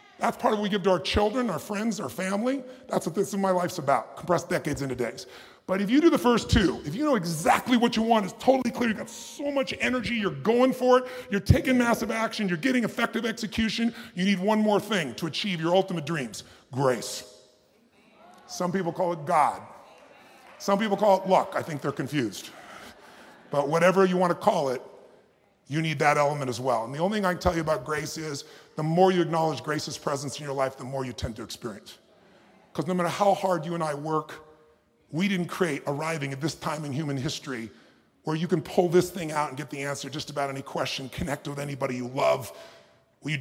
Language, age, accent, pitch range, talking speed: English, 40-59, American, 145-200 Hz, 225 wpm